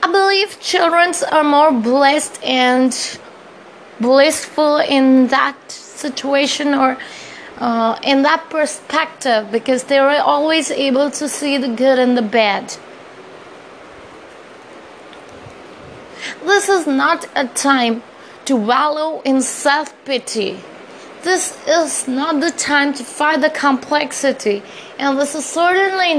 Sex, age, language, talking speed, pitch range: female, 20-39, English, 115 wpm, 260-320 Hz